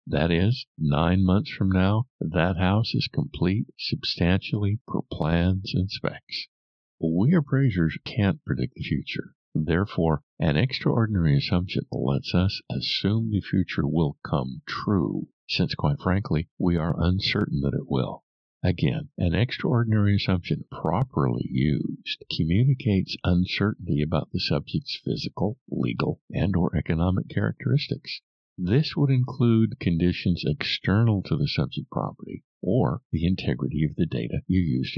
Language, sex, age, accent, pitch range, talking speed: English, male, 50-69, American, 90-120 Hz, 130 wpm